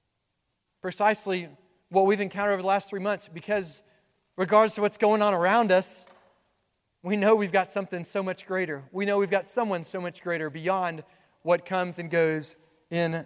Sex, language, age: male, English, 30-49